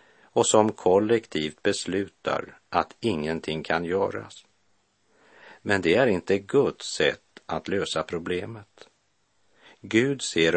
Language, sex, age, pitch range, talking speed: Swedish, male, 50-69, 80-105 Hz, 110 wpm